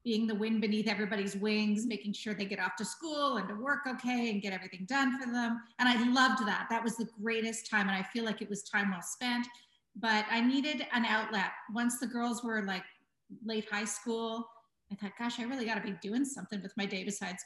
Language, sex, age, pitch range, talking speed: English, female, 30-49, 205-240 Hz, 235 wpm